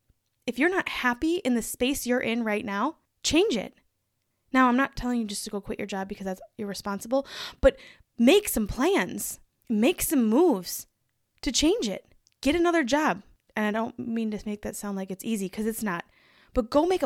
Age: 20-39